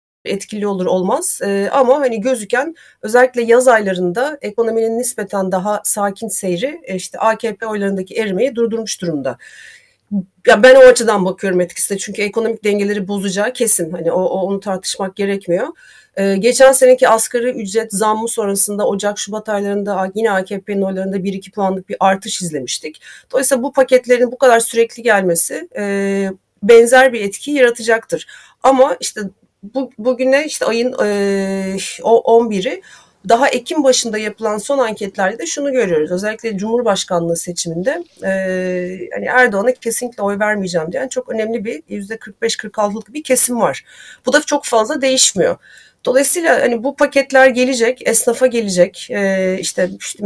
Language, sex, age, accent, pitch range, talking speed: Turkish, female, 40-59, native, 195-245 Hz, 135 wpm